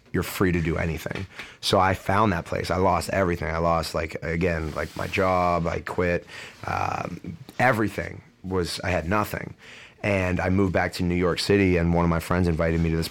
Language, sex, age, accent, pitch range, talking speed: English, male, 30-49, American, 85-90 Hz, 205 wpm